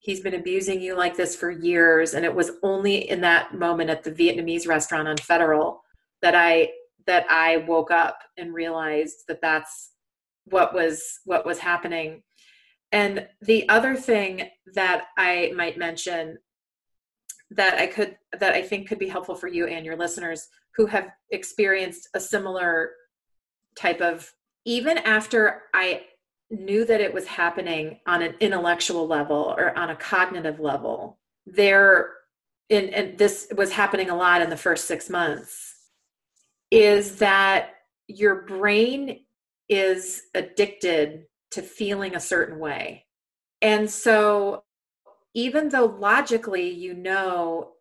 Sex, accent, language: female, American, English